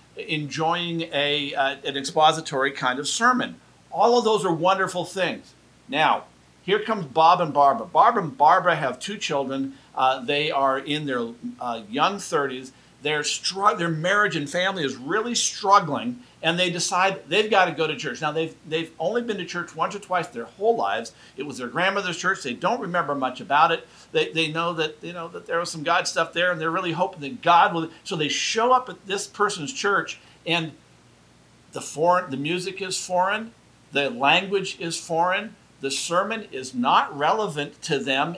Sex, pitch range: male, 145-190 Hz